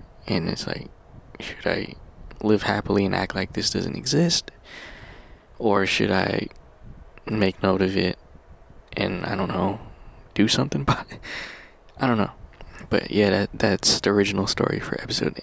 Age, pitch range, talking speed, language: 20-39, 95-110 Hz, 155 wpm, English